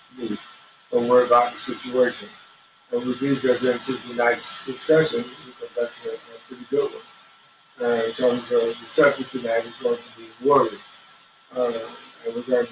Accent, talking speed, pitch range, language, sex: American, 165 wpm, 120-135 Hz, English, male